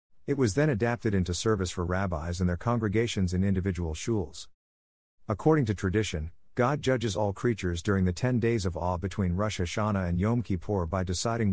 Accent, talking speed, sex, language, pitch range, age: American, 180 wpm, male, English, 90-115 Hz, 50-69